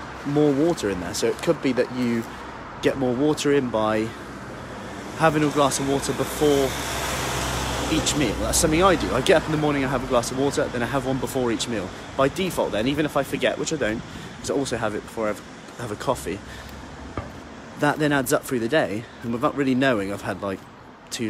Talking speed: 230 wpm